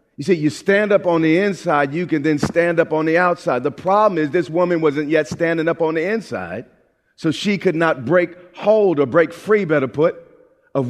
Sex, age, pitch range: male, 40-59, 125-175 Hz